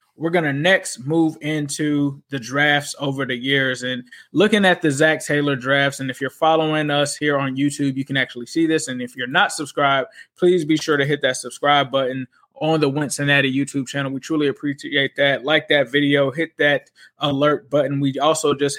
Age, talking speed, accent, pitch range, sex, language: 20-39, 200 wpm, American, 140-160 Hz, male, English